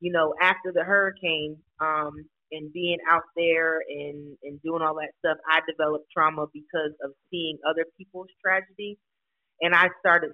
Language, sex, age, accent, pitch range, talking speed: English, female, 30-49, American, 160-180 Hz, 165 wpm